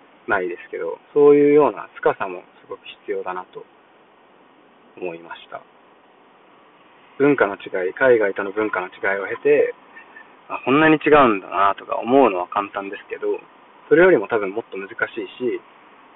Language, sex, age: Japanese, male, 20-39